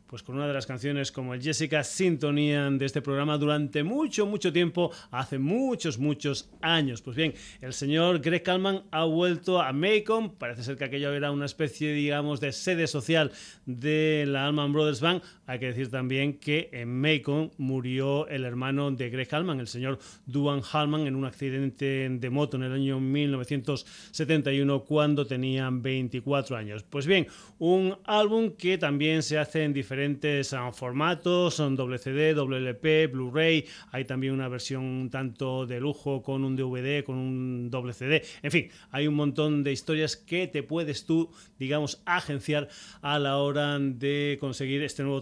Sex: male